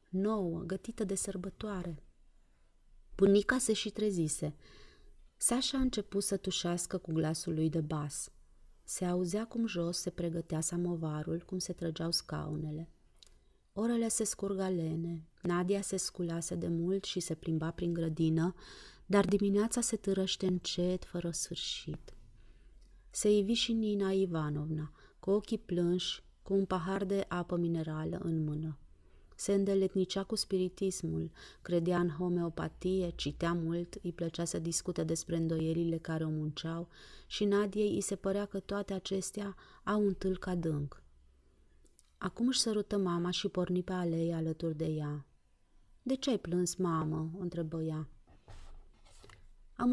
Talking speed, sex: 140 wpm, female